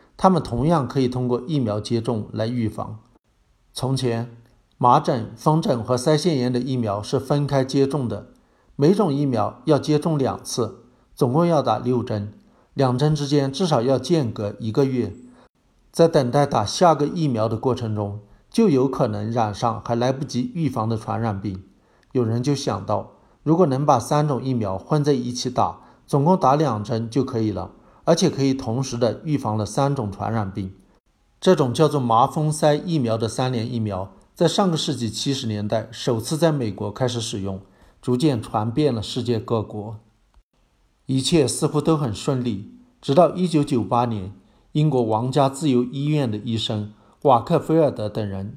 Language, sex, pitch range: Chinese, male, 110-145 Hz